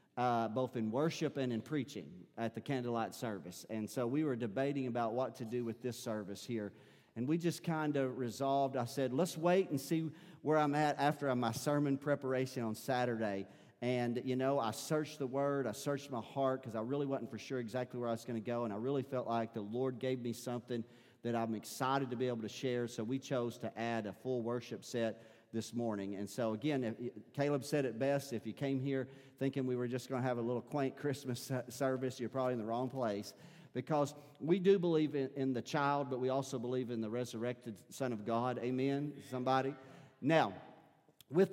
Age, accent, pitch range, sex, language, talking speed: 40-59, American, 120-140 Hz, male, English, 215 wpm